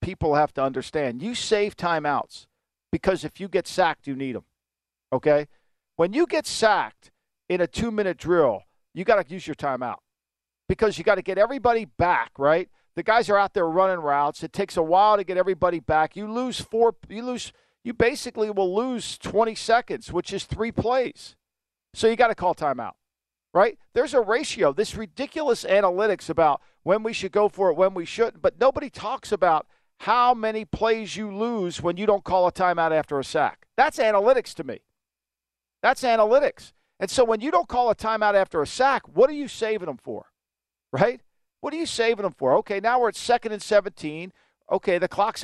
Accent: American